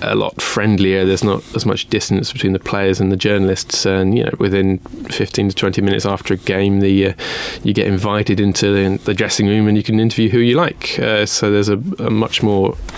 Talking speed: 225 wpm